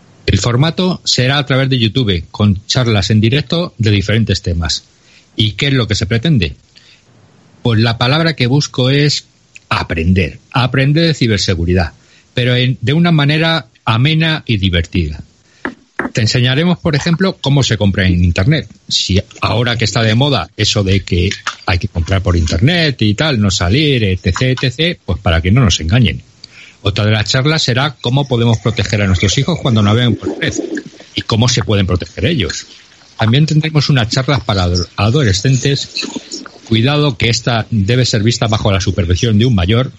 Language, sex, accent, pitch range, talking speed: Spanish, male, Spanish, 100-135 Hz, 170 wpm